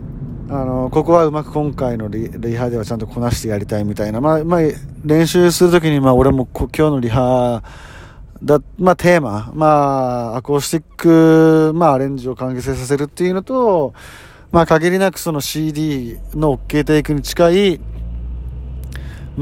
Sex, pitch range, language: male, 120-165 Hz, Japanese